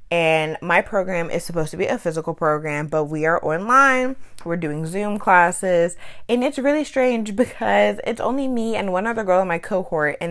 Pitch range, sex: 165-230 Hz, female